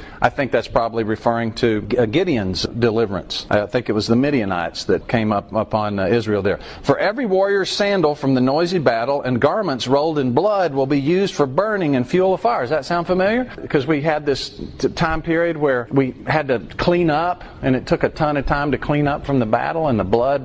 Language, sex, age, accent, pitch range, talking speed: English, male, 40-59, American, 140-205 Hz, 215 wpm